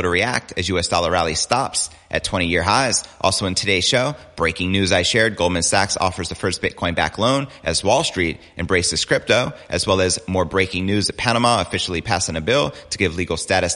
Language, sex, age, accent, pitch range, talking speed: English, male, 30-49, American, 90-110 Hz, 205 wpm